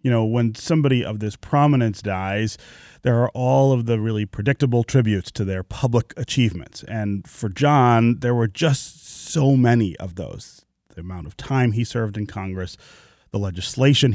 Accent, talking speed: American, 170 wpm